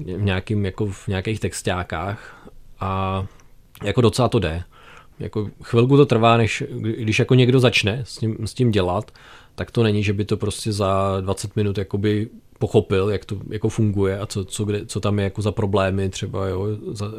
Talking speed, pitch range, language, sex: 180 wpm, 95-115 Hz, Czech, male